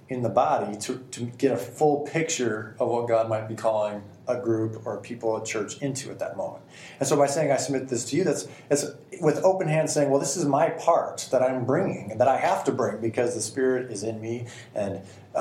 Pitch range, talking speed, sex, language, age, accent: 115-155 Hz, 240 wpm, male, English, 30-49, American